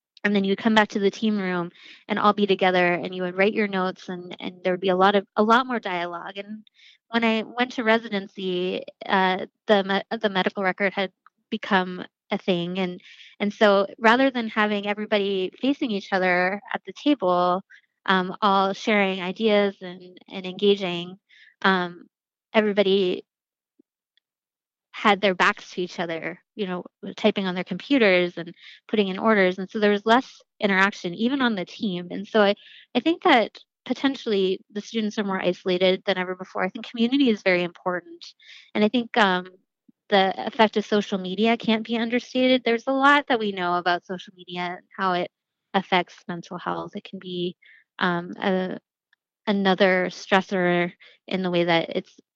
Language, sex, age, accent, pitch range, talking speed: English, female, 20-39, American, 185-220 Hz, 175 wpm